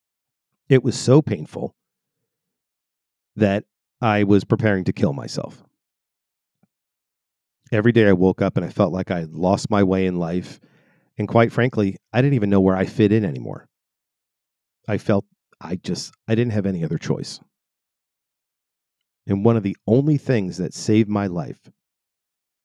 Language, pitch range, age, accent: English, 95-115 Hz, 40-59, American